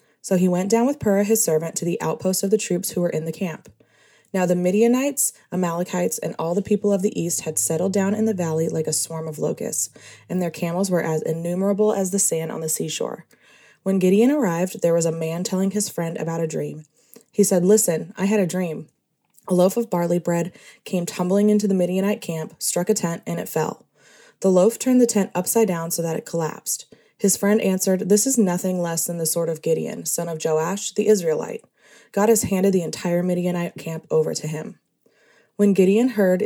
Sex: female